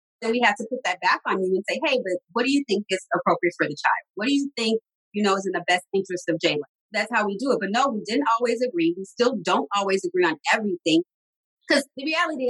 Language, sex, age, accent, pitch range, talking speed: English, female, 30-49, American, 200-265 Hz, 270 wpm